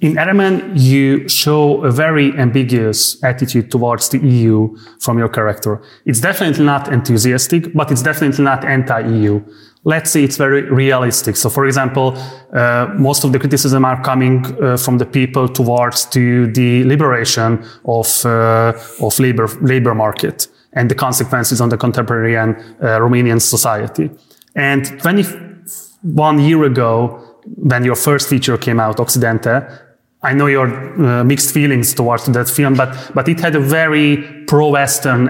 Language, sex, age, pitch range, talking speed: Hungarian, male, 30-49, 120-145 Hz, 150 wpm